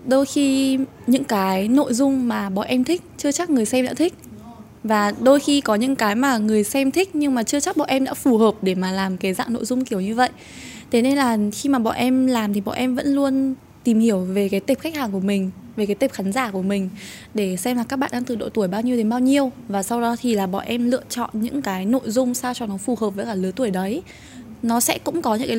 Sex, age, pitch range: female, 20-39, 205-265 Hz